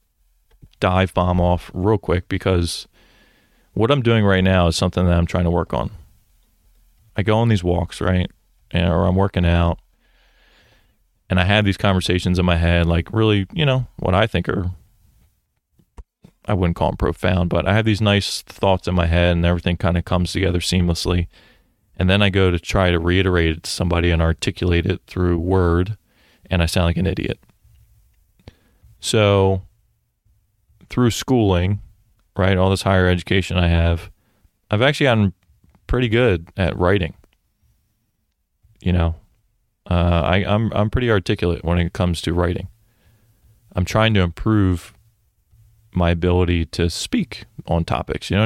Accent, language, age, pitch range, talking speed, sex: American, English, 30-49, 85-105 Hz, 160 wpm, male